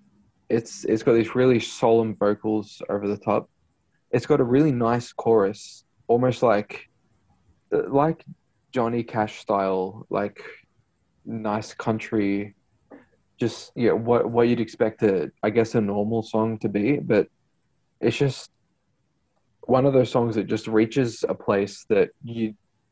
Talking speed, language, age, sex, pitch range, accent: 145 wpm, English, 20-39, male, 100-120 Hz, Australian